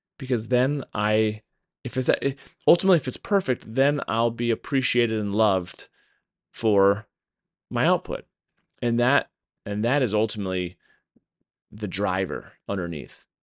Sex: male